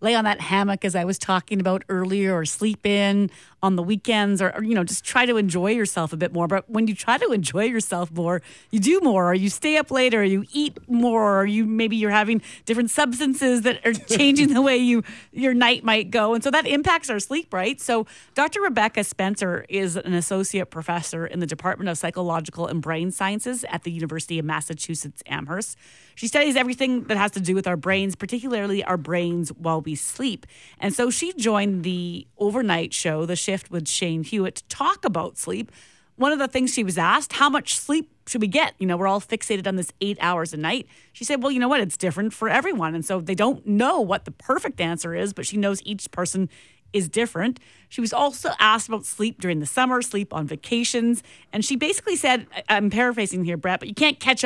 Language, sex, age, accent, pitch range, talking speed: English, female, 30-49, American, 180-240 Hz, 220 wpm